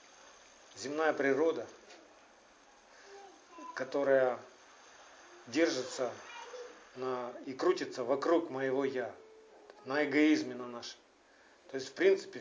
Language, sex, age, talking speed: Russian, male, 40-59, 85 wpm